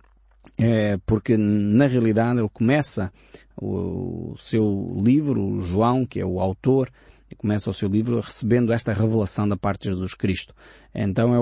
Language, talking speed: Portuguese, 160 wpm